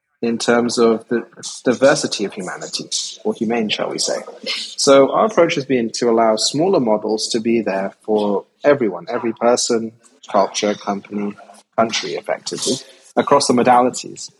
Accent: British